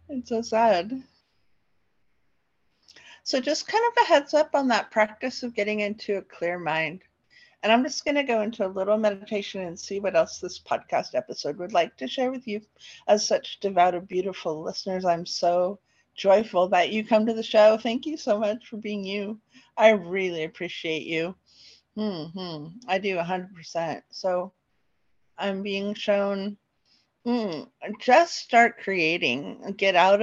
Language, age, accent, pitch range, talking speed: English, 50-69, American, 175-235 Hz, 165 wpm